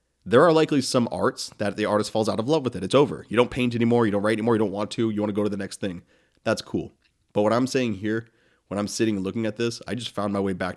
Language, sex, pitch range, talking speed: English, male, 100-115 Hz, 310 wpm